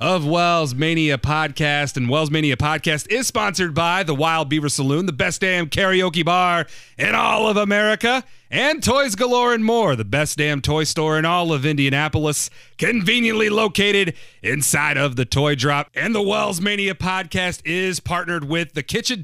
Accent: American